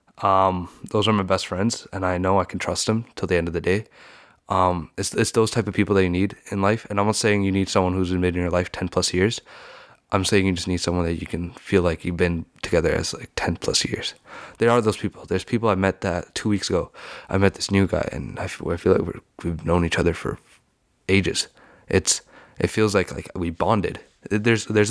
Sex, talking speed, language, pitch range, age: male, 245 wpm, English, 90-105 Hz, 20-39